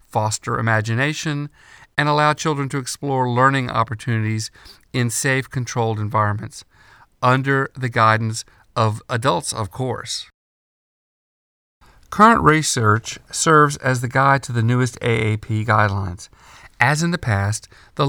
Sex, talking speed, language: male, 120 wpm, English